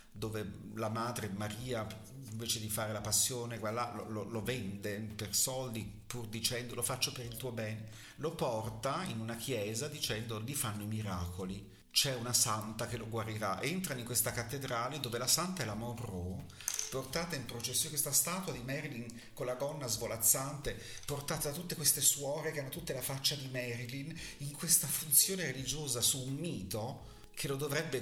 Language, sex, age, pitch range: Italian, male, 40-59, 100-130 Hz